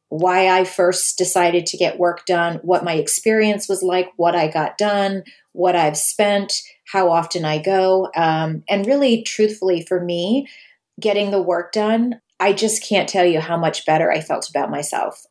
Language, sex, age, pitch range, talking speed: English, female, 30-49, 170-205 Hz, 180 wpm